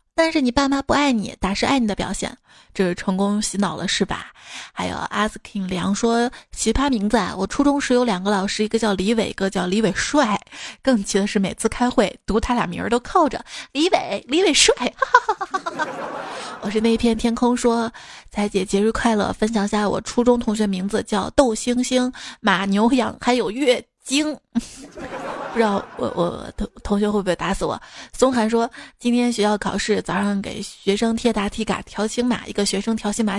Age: 20-39